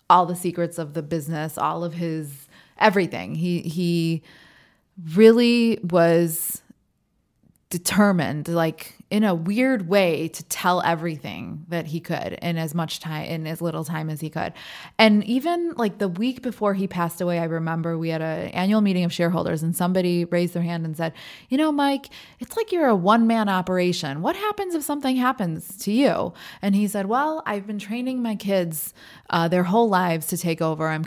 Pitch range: 160-190 Hz